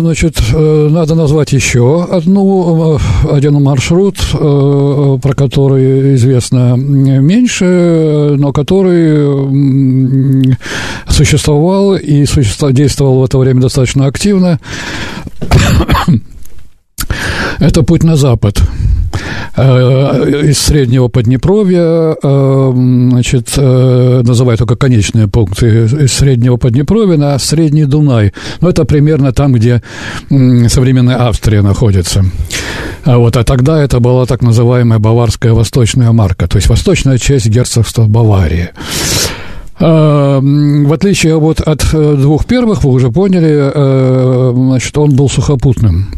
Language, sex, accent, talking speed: Russian, male, native, 100 wpm